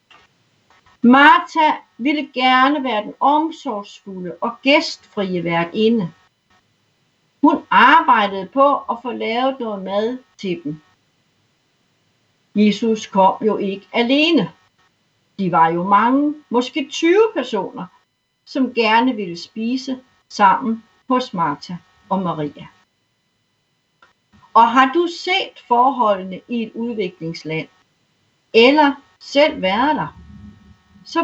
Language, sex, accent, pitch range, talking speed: Danish, female, native, 185-265 Hz, 100 wpm